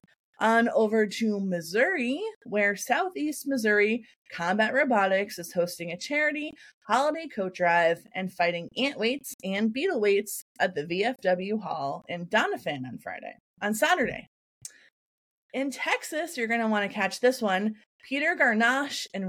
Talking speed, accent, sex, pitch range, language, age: 145 wpm, American, female, 185-255 Hz, English, 20-39